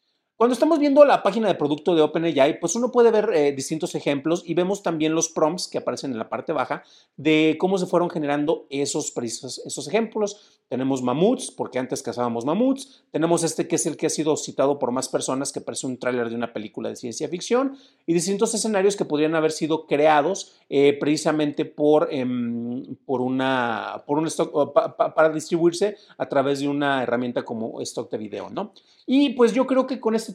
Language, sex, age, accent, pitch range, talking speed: Spanish, male, 40-59, Mexican, 140-200 Hz, 200 wpm